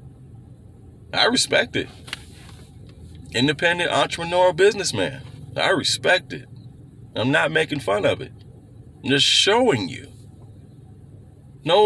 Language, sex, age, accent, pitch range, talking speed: English, male, 40-59, American, 110-135 Hz, 100 wpm